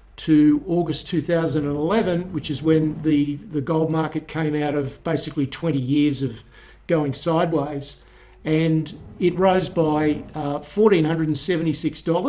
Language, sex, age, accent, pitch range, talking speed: English, male, 50-69, Australian, 145-170 Hz, 115 wpm